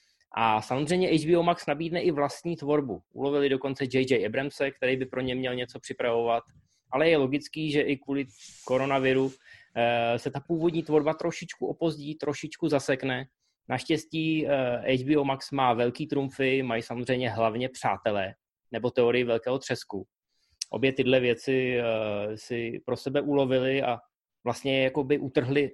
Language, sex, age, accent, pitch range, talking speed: Czech, male, 20-39, native, 120-145 Hz, 140 wpm